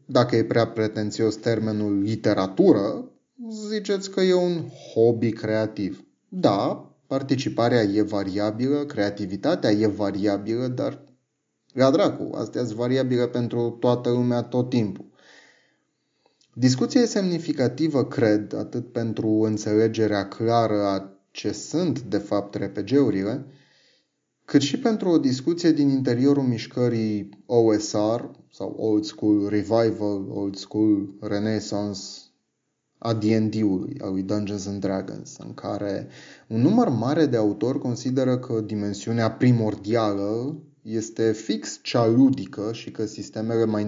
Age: 30-49